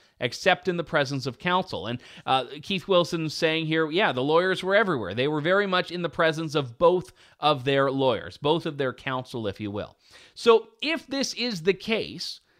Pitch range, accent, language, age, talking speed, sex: 150-195 Hz, American, English, 30-49, 200 wpm, male